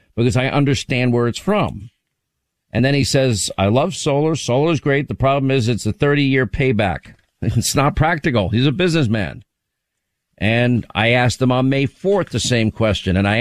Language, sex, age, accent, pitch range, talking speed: English, male, 50-69, American, 115-155 Hz, 190 wpm